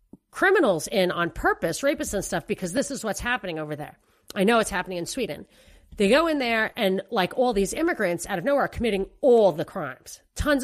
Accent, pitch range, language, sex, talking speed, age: American, 195-260 Hz, English, female, 215 wpm, 40-59